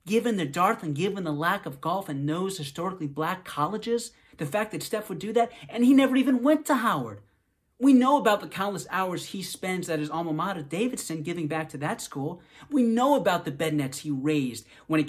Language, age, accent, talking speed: English, 30-49, American, 225 wpm